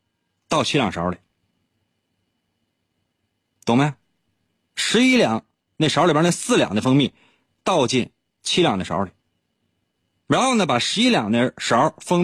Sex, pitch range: male, 95-135 Hz